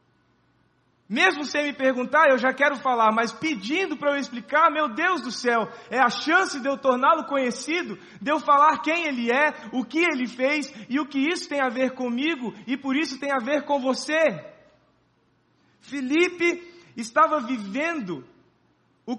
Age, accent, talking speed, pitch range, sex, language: 20-39, Brazilian, 170 wpm, 230-290 Hz, male, Portuguese